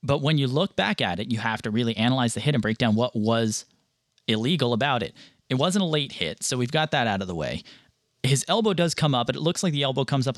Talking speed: 280 wpm